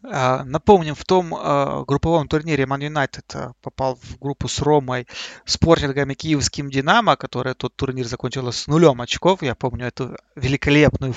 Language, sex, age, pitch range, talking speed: Russian, male, 30-49, 135-165 Hz, 145 wpm